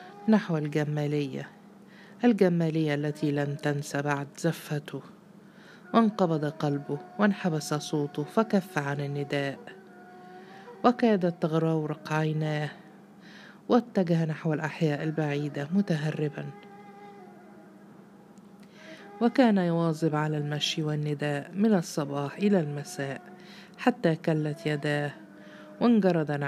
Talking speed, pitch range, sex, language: 80 wpm, 150-200 Hz, female, Arabic